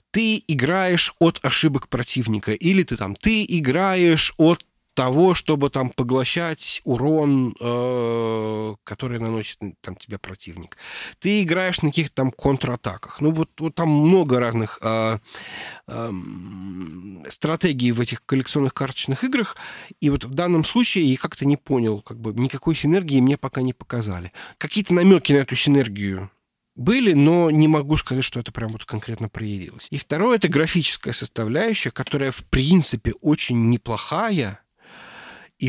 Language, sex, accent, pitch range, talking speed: Russian, male, native, 120-165 Hz, 145 wpm